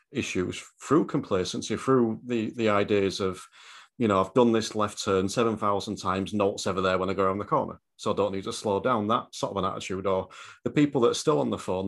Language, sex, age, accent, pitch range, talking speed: English, male, 40-59, British, 95-130 Hz, 240 wpm